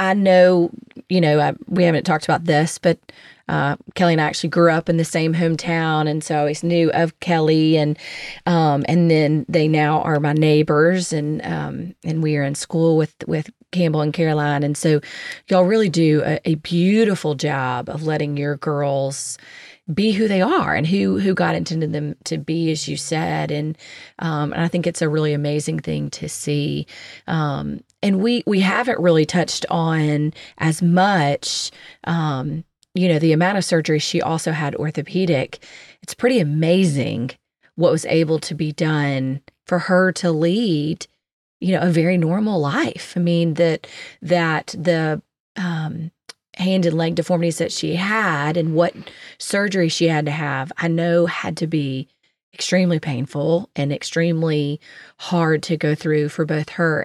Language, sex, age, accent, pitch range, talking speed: English, female, 30-49, American, 150-175 Hz, 175 wpm